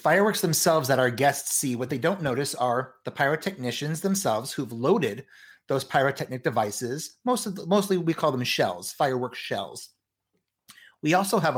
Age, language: 30-49, English